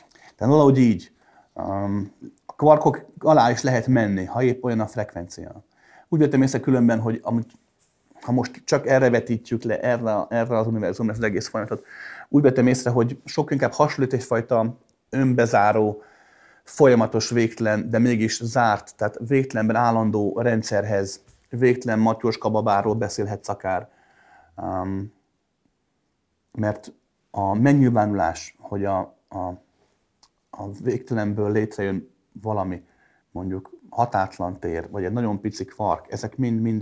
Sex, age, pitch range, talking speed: male, 30-49, 100-120 Hz, 130 wpm